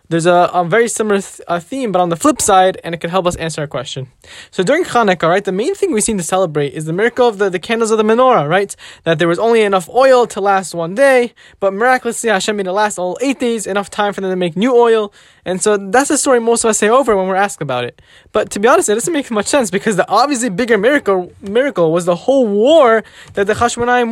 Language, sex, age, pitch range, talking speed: English, male, 10-29, 190-250 Hz, 265 wpm